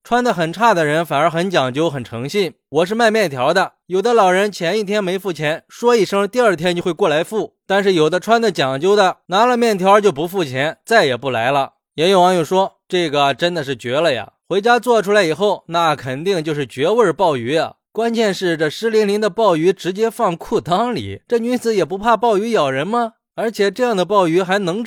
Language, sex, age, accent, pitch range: Chinese, male, 20-39, native, 155-225 Hz